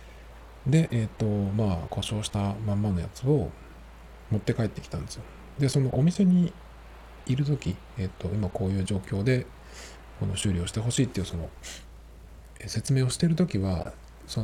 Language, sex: Japanese, male